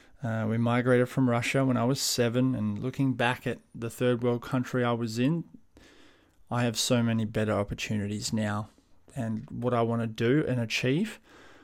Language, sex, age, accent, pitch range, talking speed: English, male, 20-39, Australian, 110-130 Hz, 180 wpm